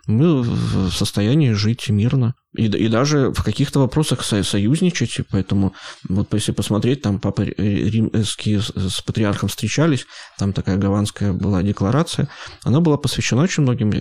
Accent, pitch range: native, 100-125 Hz